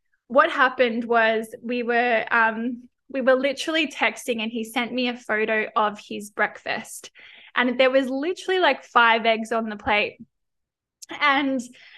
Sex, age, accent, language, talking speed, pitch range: female, 10-29, Australian, English, 150 wpm, 225-255 Hz